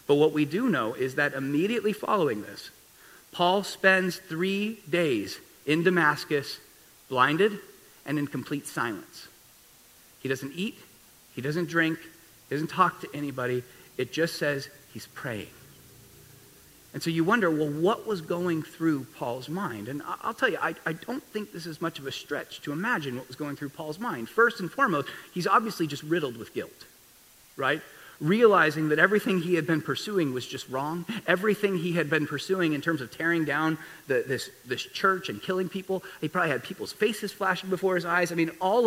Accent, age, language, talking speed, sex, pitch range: American, 40-59, English, 185 wpm, male, 150-200 Hz